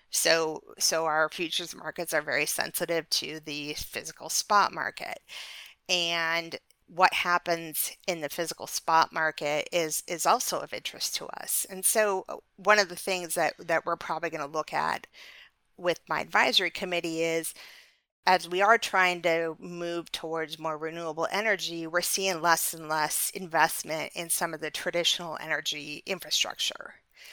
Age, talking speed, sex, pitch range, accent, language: 40-59, 150 wpm, female, 160-190 Hz, American, English